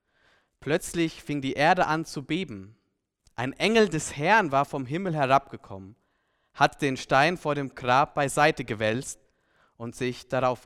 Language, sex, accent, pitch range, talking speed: German, male, German, 110-160 Hz, 145 wpm